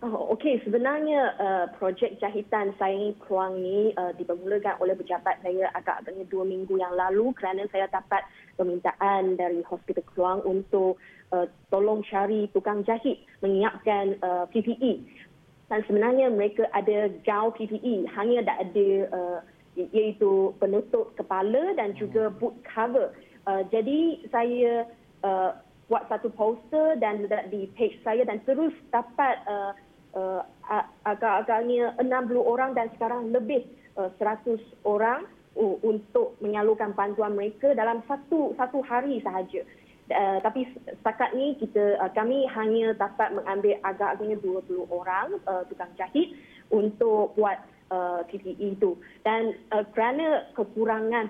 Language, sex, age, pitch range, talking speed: Malay, female, 20-39, 195-240 Hz, 125 wpm